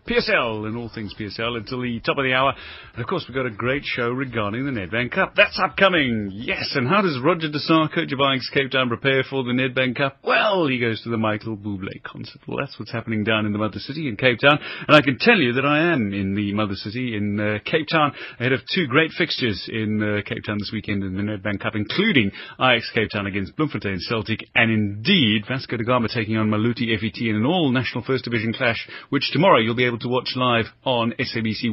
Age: 30-49